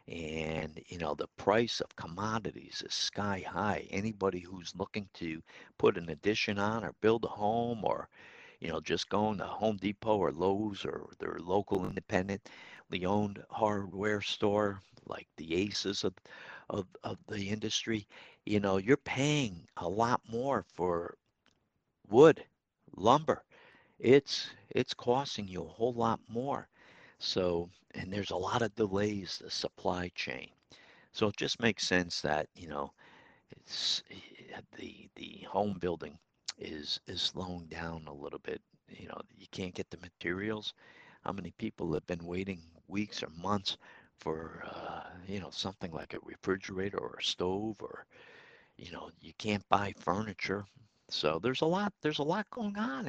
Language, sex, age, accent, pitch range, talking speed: English, male, 60-79, American, 90-110 Hz, 155 wpm